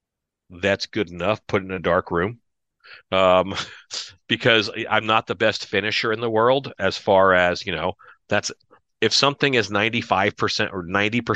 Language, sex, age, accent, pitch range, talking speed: English, male, 40-59, American, 90-105 Hz, 155 wpm